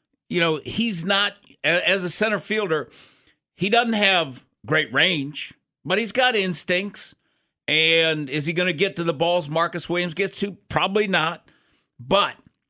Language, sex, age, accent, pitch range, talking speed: English, male, 50-69, American, 140-185 Hz, 155 wpm